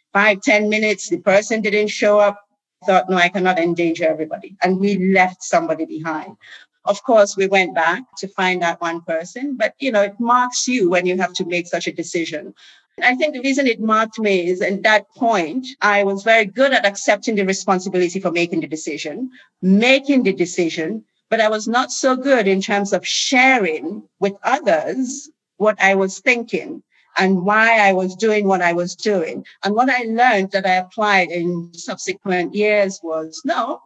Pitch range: 185-240 Hz